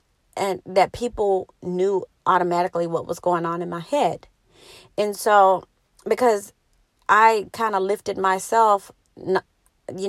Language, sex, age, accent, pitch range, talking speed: English, female, 40-59, American, 180-225 Hz, 125 wpm